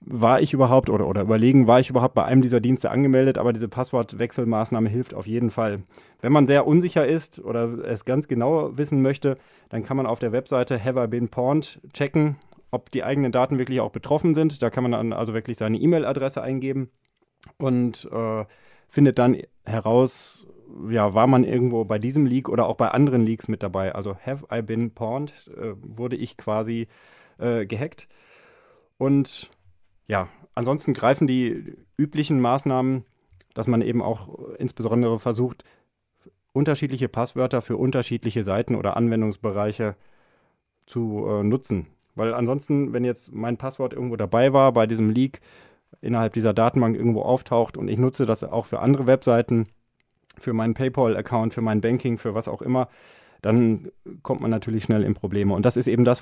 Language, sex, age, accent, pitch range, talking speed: German, male, 30-49, German, 115-130 Hz, 170 wpm